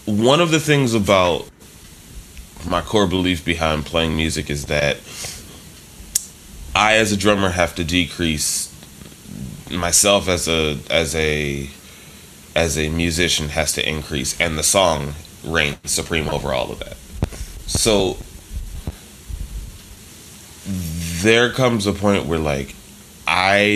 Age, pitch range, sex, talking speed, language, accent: 20-39, 75-95 Hz, male, 120 wpm, English, American